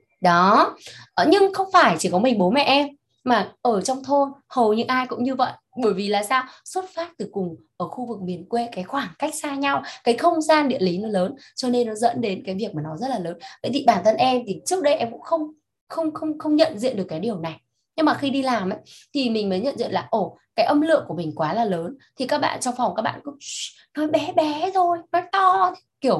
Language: Vietnamese